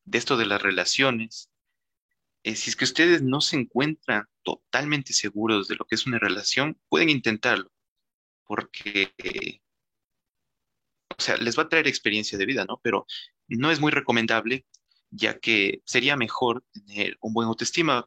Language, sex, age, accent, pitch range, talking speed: Spanish, male, 30-49, Mexican, 105-135 Hz, 160 wpm